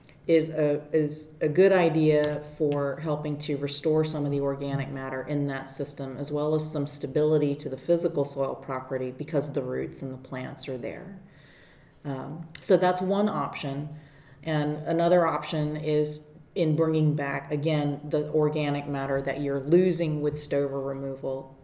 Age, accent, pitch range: 40-59, American, 135-155 Hz